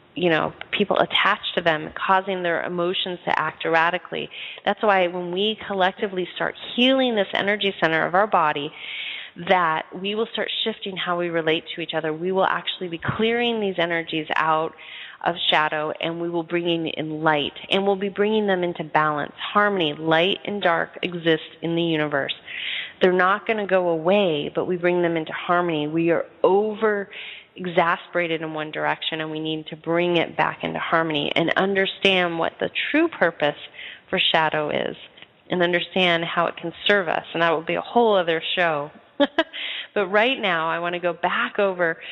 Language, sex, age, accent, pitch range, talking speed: English, female, 30-49, American, 165-195 Hz, 180 wpm